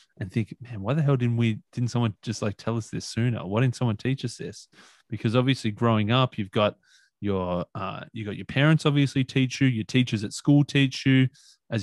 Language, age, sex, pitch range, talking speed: English, 20-39, male, 105-130 Hz, 225 wpm